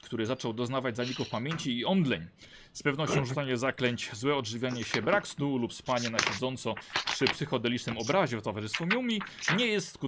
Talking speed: 175 wpm